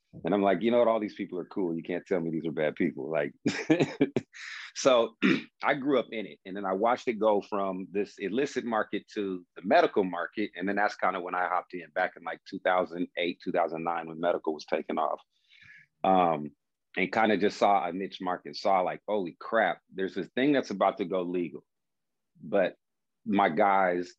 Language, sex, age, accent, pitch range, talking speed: English, male, 40-59, American, 85-100 Hz, 205 wpm